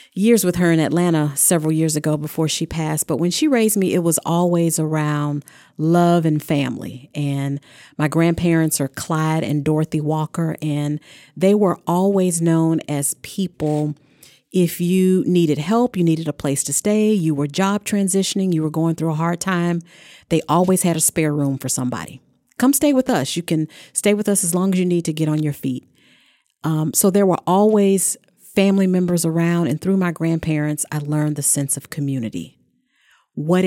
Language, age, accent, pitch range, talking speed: English, 40-59, American, 150-180 Hz, 185 wpm